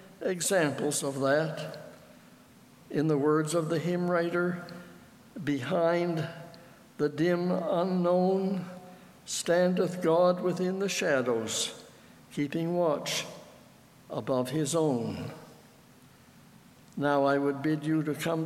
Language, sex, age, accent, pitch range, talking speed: English, male, 60-79, American, 150-180 Hz, 100 wpm